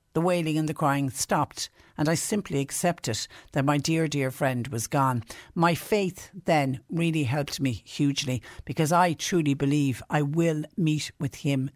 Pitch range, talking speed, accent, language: 130-160 Hz, 170 wpm, Irish, English